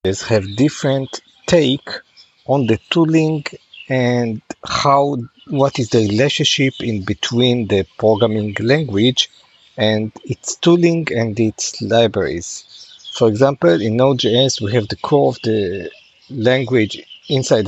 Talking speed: 120 wpm